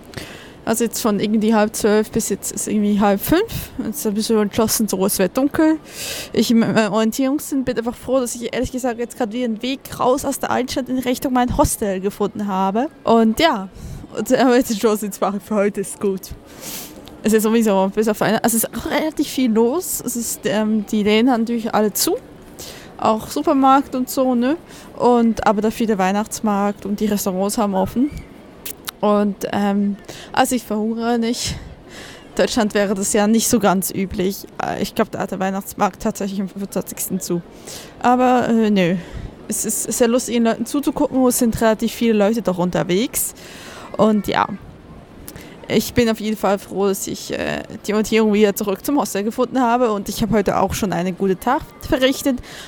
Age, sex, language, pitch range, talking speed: 20-39, female, German, 205-245 Hz, 190 wpm